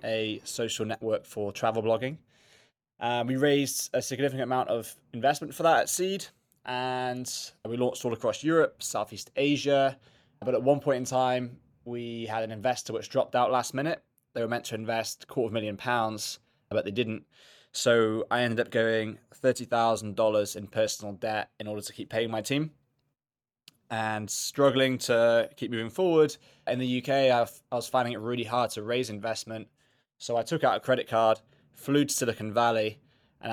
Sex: male